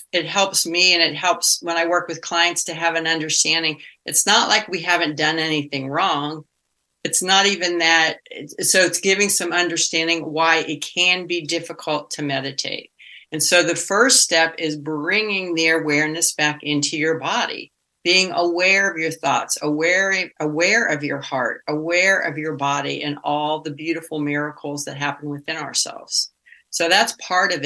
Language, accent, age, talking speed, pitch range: English, American, 50-69, 170 wpm, 150-175 Hz